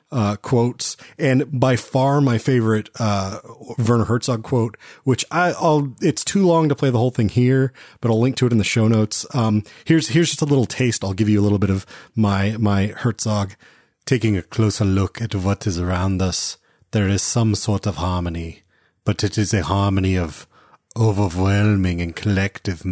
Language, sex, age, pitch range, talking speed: English, male, 30-49, 100-120 Hz, 190 wpm